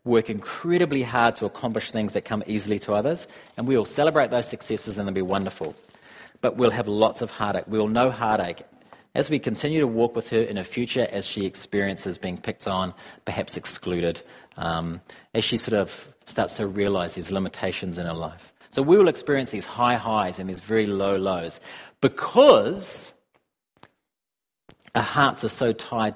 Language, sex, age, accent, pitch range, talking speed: English, male, 40-59, Australian, 100-145 Hz, 185 wpm